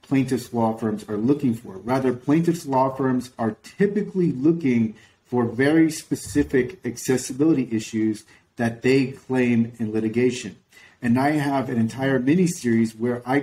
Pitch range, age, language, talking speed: 115-145 Hz, 40-59, English, 140 wpm